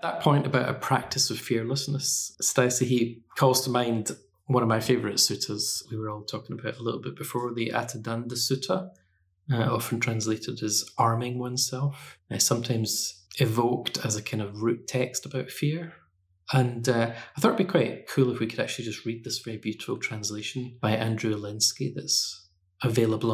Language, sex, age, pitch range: English, male, 20-39, 110-130 Hz